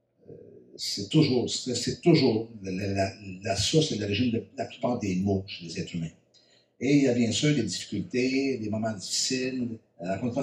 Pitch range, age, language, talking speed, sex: 100-130 Hz, 60-79, French, 200 wpm, male